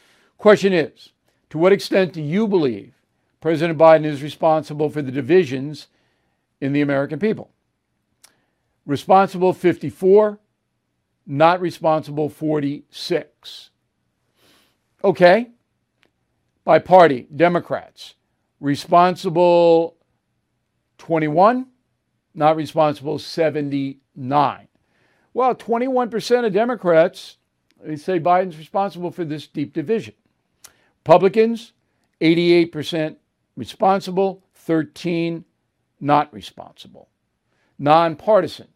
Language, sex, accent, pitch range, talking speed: English, male, American, 145-185 Hz, 80 wpm